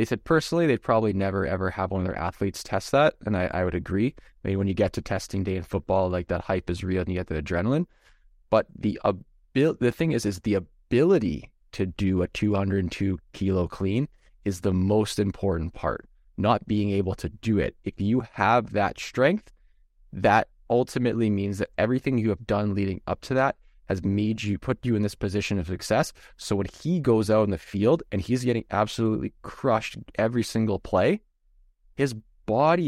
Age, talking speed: 20-39, 200 wpm